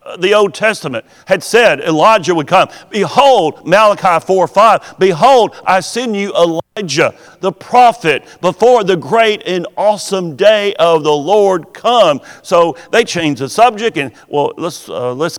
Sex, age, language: male, 50-69, English